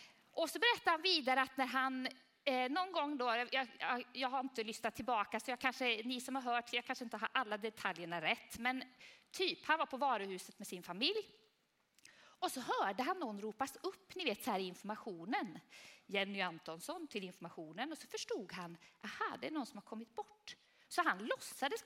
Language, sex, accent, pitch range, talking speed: Swedish, female, native, 225-345 Hz, 200 wpm